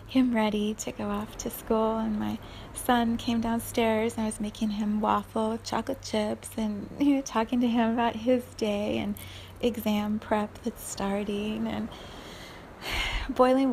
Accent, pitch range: American, 215-265 Hz